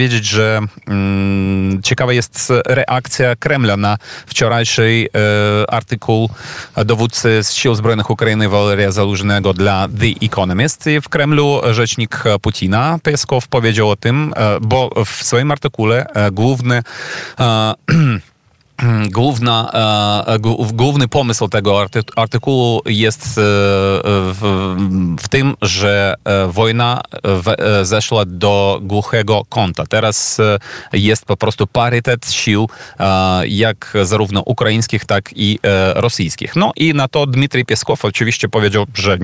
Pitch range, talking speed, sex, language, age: 100-125 Hz, 105 wpm, male, Polish, 30-49